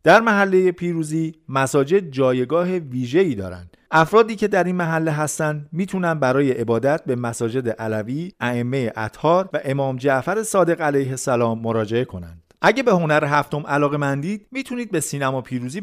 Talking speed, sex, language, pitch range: 150 wpm, male, Persian, 120-165 Hz